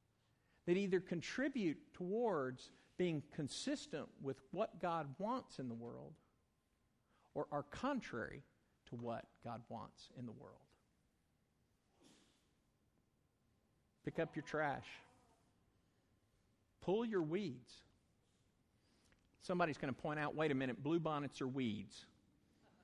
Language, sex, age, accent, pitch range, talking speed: English, male, 50-69, American, 110-160 Hz, 110 wpm